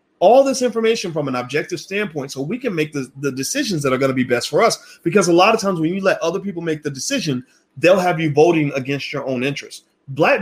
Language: English